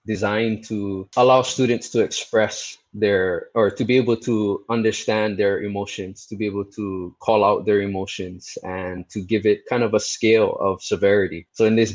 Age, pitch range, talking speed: 20-39, 90-110 Hz, 180 wpm